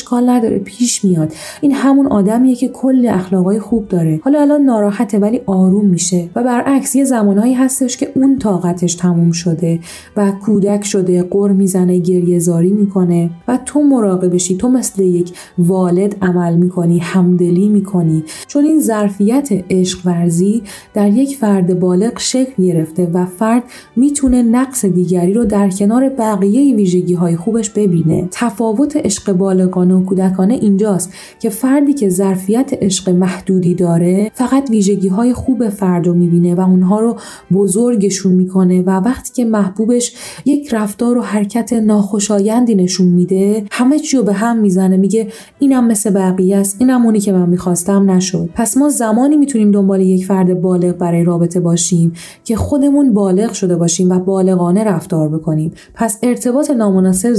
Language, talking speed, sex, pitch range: Persian, 150 wpm, female, 185-235 Hz